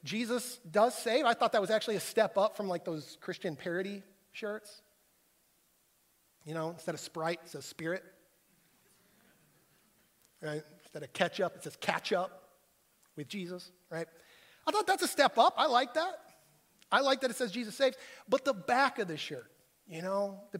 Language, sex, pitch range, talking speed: English, male, 190-245 Hz, 180 wpm